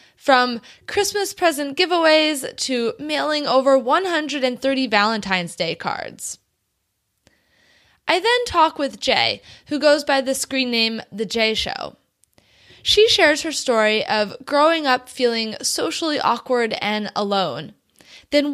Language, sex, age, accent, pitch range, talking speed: English, female, 20-39, American, 215-295 Hz, 125 wpm